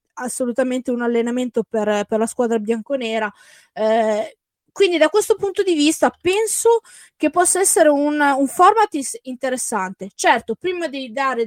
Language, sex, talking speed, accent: Italian, female, 140 wpm, native